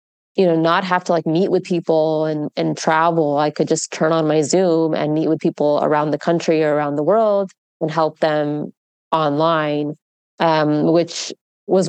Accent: American